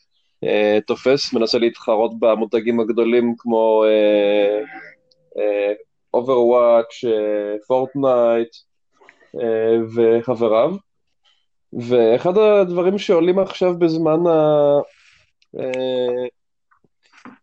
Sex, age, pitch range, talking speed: male, 20-39, 120-140 Hz, 70 wpm